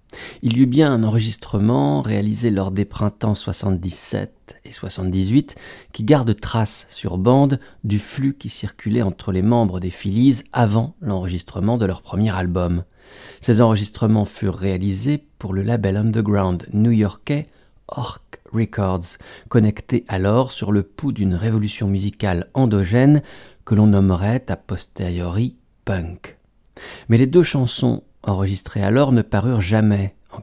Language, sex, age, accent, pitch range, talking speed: French, male, 40-59, French, 95-120 Hz, 135 wpm